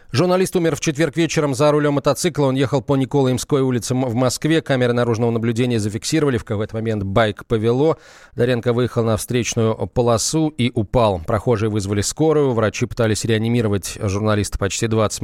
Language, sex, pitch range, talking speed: Russian, male, 110-135 Hz, 160 wpm